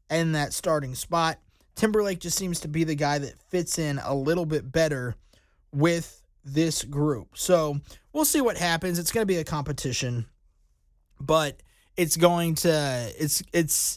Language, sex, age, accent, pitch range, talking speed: English, male, 20-39, American, 150-185 Hz, 165 wpm